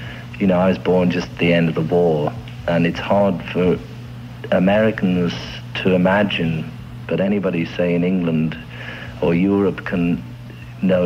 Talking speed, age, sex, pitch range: 150 wpm, 50-69, male, 80-105 Hz